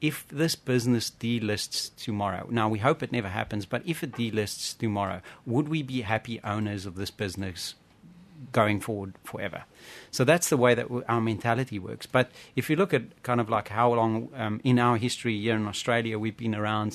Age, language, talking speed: 40-59, English, 195 wpm